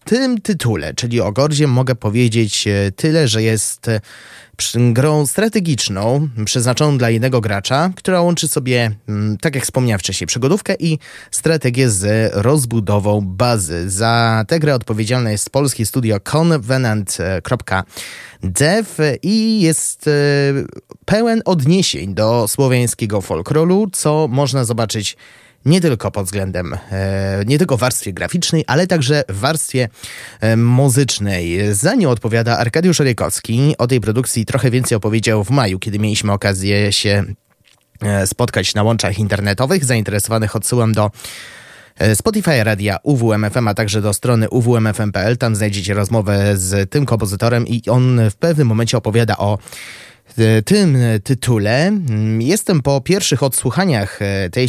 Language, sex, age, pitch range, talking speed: Polish, male, 20-39, 105-145 Hz, 130 wpm